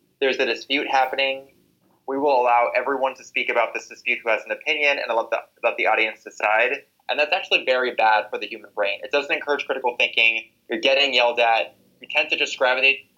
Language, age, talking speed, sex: English, 20-39, 215 wpm, male